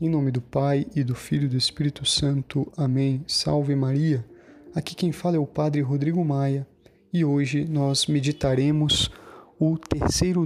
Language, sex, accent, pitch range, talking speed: Portuguese, male, Brazilian, 130-160 Hz, 160 wpm